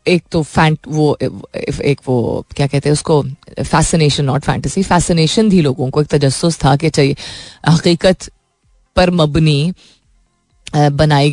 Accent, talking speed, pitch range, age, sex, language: native, 150 wpm, 145-175 Hz, 30-49, female, Hindi